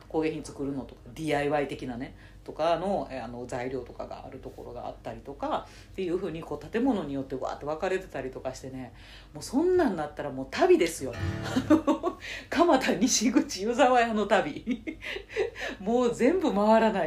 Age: 40-59